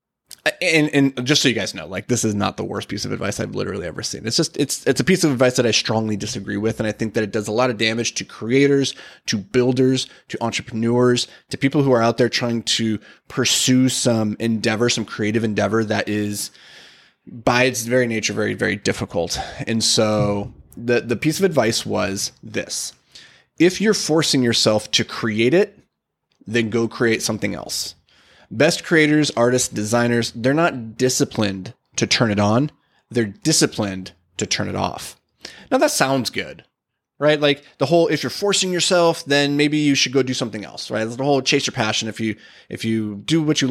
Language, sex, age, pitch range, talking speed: English, male, 20-39, 110-145 Hz, 195 wpm